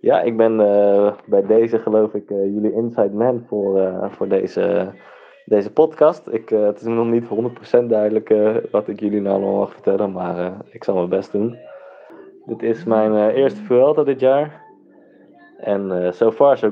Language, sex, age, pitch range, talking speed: English, male, 20-39, 100-125 Hz, 195 wpm